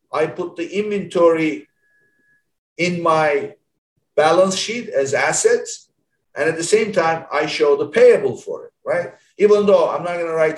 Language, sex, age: English, male, 50-69